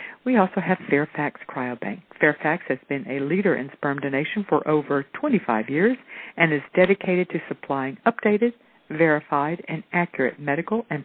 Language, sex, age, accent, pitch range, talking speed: English, female, 50-69, American, 135-170 Hz, 150 wpm